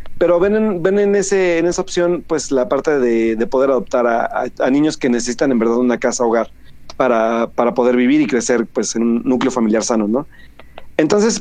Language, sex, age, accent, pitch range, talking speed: Spanish, male, 40-59, Mexican, 115-170 Hz, 210 wpm